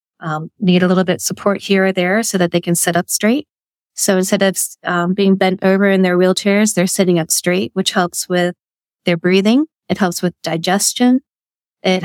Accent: American